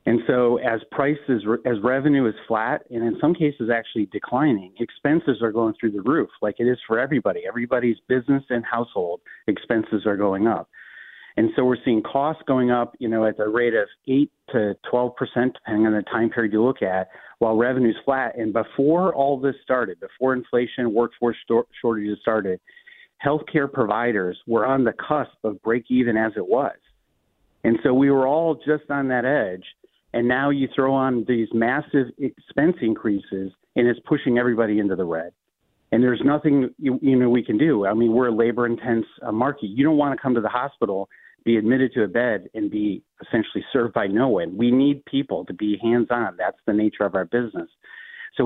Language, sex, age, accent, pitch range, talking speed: English, male, 40-59, American, 115-140 Hz, 195 wpm